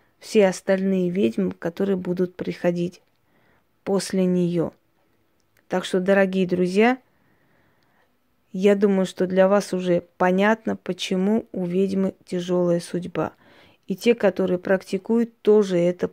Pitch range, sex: 180-210 Hz, female